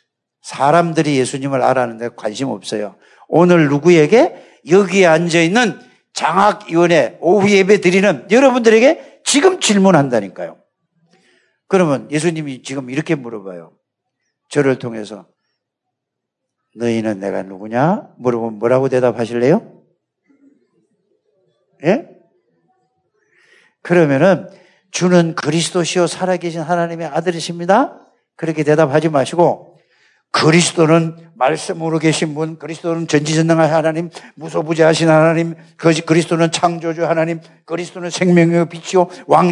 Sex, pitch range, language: male, 140-185 Hz, Korean